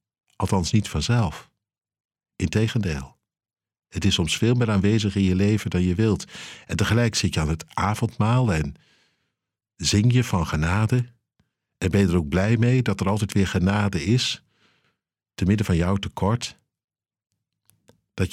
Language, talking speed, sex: Dutch, 155 wpm, male